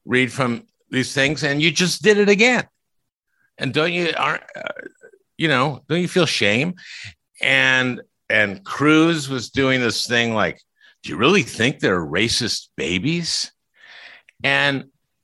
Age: 50-69